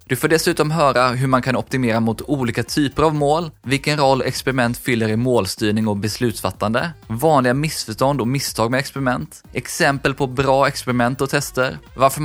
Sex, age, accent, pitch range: male, 20-39, native, 110-140 Hz